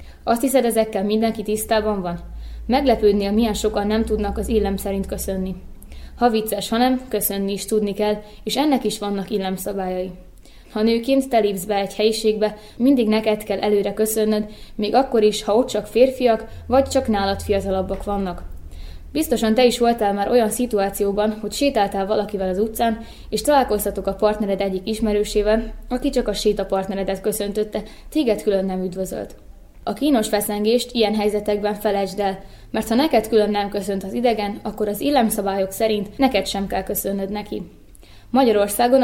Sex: female